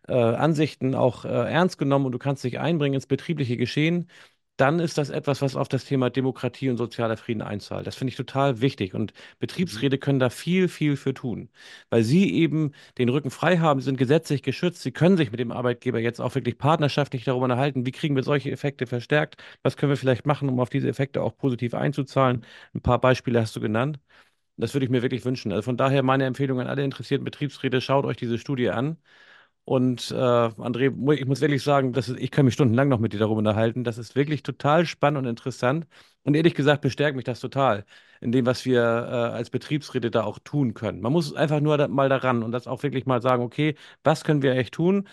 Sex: male